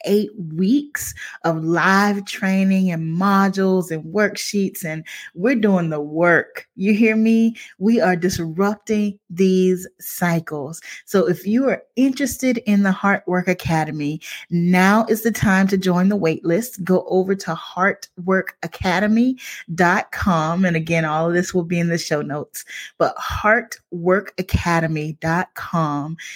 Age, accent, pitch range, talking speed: 30-49, American, 165-200 Hz, 125 wpm